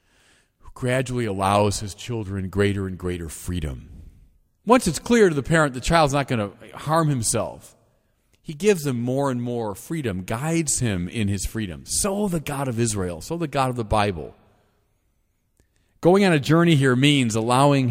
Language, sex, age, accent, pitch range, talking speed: English, male, 40-59, American, 105-160 Hz, 170 wpm